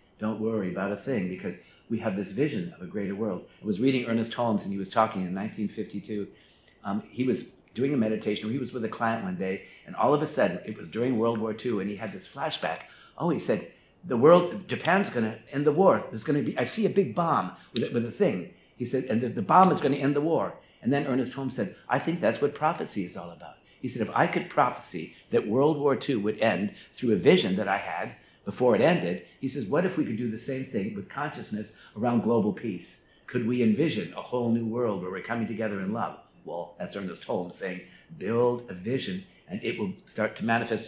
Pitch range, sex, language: 105-130 Hz, male, English